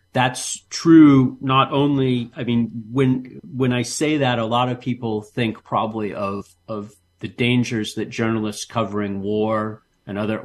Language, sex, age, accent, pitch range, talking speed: English, male, 40-59, American, 100-125 Hz, 155 wpm